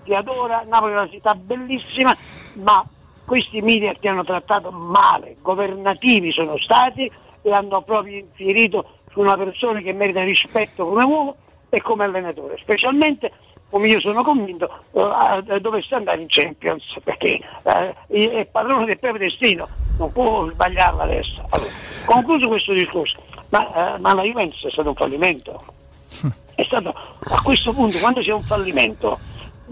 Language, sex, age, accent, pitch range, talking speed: Italian, male, 60-79, native, 195-235 Hz, 145 wpm